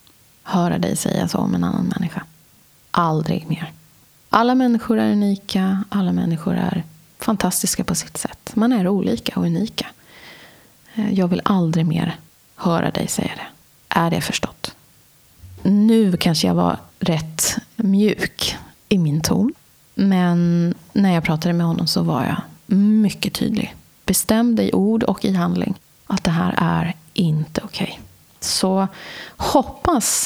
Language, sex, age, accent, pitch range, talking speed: Swedish, female, 30-49, native, 170-200 Hz, 145 wpm